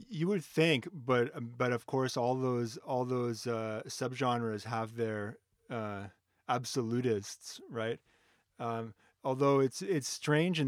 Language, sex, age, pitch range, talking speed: English, male, 30-49, 110-130 Hz, 135 wpm